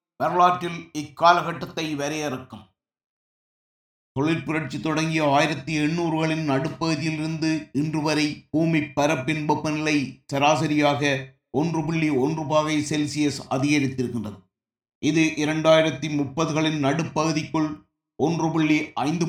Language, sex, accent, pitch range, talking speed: Tamil, male, native, 150-180 Hz, 70 wpm